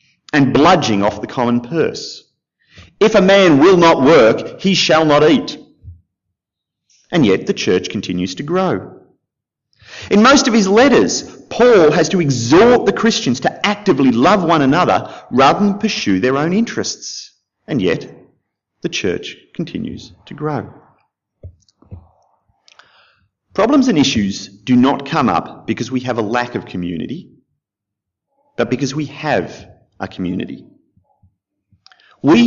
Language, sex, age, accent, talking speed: English, male, 30-49, Australian, 135 wpm